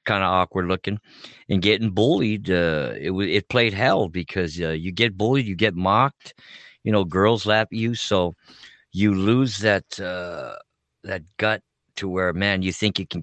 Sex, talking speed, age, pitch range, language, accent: male, 180 wpm, 50-69, 90-105 Hz, English, American